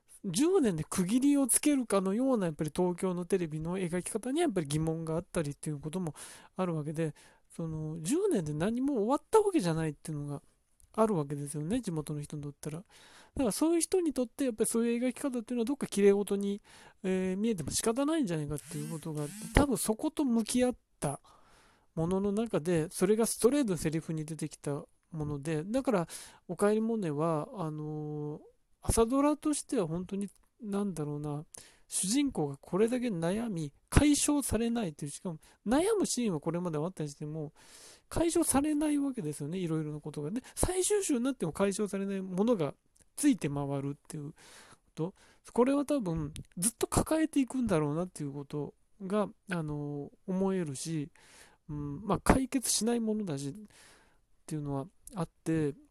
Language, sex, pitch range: Japanese, male, 155-240 Hz